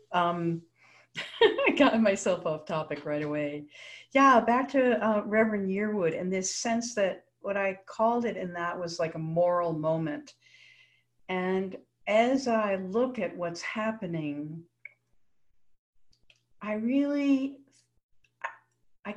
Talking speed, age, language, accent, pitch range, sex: 120 wpm, 60-79, English, American, 165-220 Hz, female